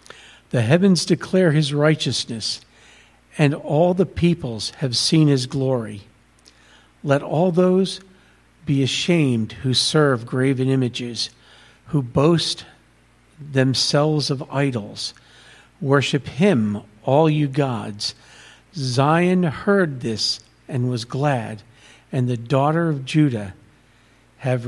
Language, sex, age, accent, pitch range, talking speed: English, male, 50-69, American, 115-155 Hz, 105 wpm